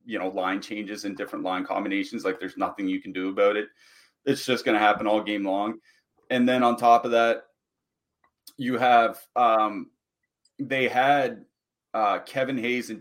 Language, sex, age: English, male, 30-49